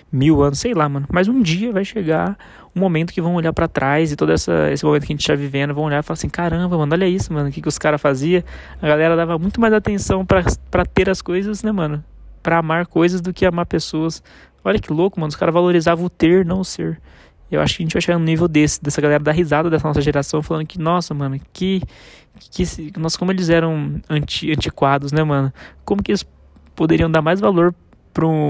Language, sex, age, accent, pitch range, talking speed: Portuguese, male, 20-39, Brazilian, 140-170 Hz, 240 wpm